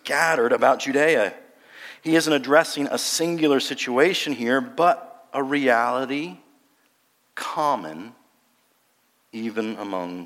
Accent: American